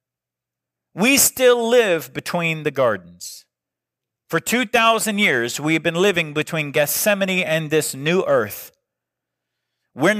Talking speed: 110 wpm